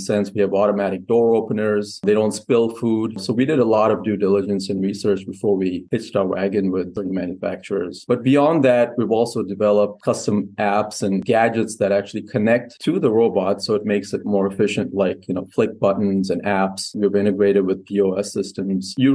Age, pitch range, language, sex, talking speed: 30-49, 95-110 Hz, English, male, 195 wpm